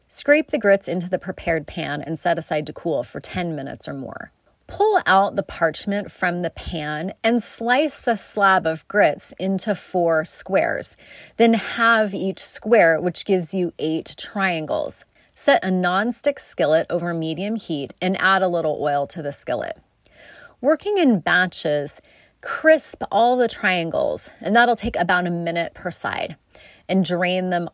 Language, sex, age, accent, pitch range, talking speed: English, female, 30-49, American, 155-200 Hz, 160 wpm